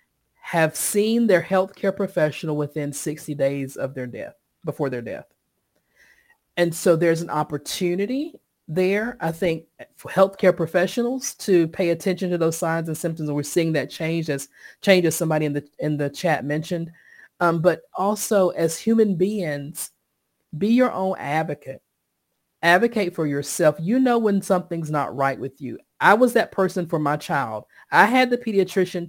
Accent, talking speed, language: American, 165 wpm, English